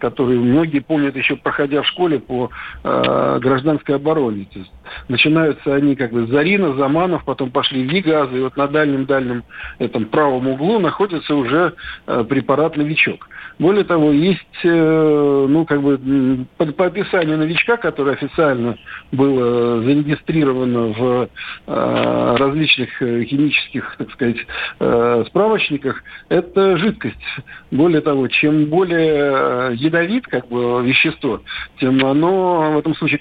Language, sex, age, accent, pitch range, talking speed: Russian, male, 60-79, native, 130-165 Hz, 130 wpm